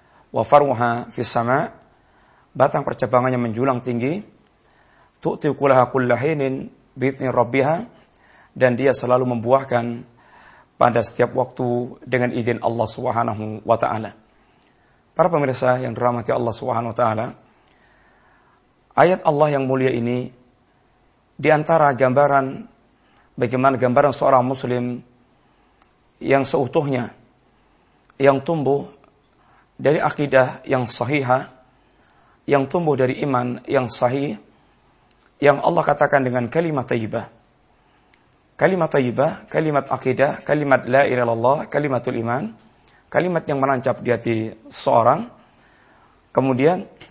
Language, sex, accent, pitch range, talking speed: Indonesian, male, native, 125-145 Hz, 95 wpm